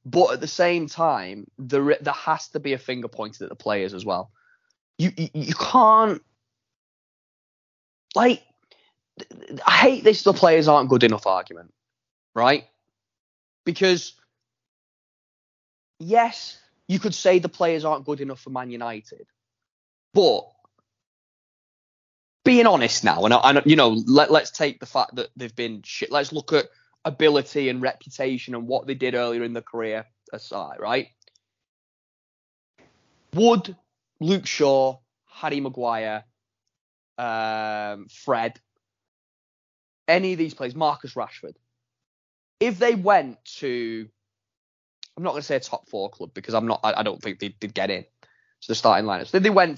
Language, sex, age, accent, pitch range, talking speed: English, male, 20-39, British, 115-180 Hz, 145 wpm